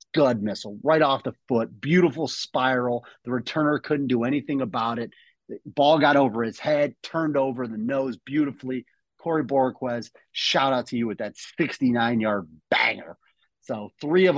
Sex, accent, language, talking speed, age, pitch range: male, American, English, 165 wpm, 30-49, 115-135 Hz